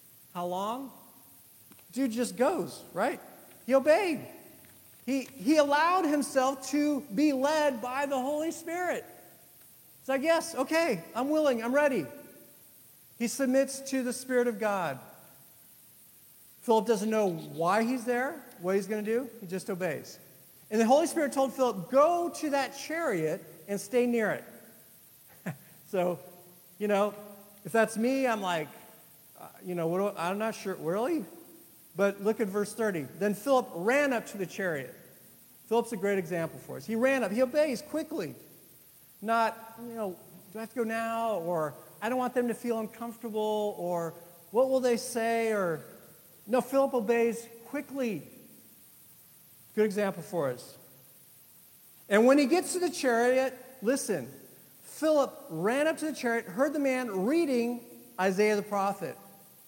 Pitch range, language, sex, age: 200-270 Hz, English, male, 40-59